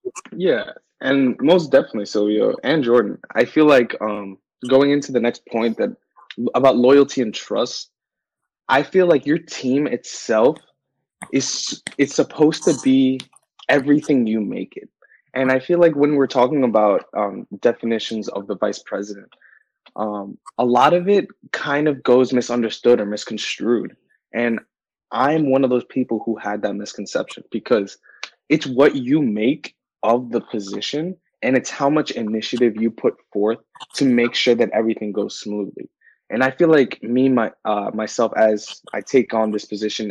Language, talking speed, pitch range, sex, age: English, 160 wpm, 110-140 Hz, male, 20-39